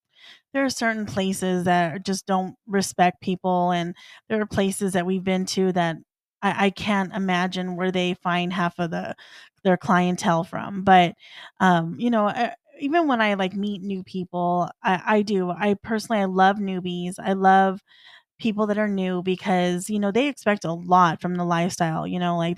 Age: 20-39